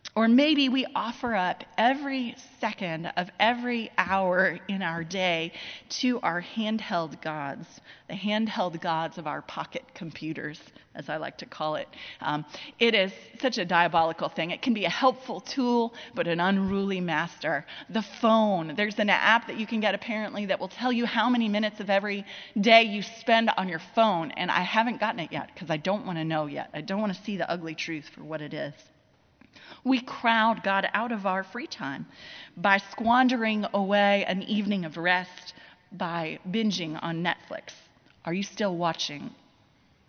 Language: English